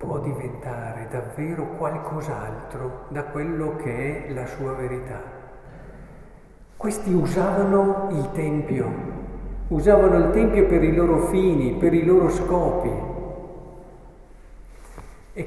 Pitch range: 125-170 Hz